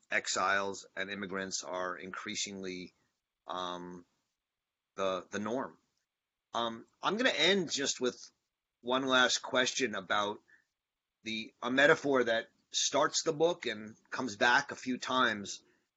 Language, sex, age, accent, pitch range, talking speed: English, male, 30-49, American, 100-125 Hz, 120 wpm